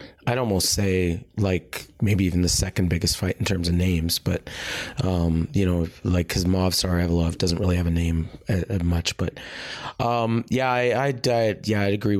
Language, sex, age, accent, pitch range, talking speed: English, male, 30-49, American, 95-120 Hz, 185 wpm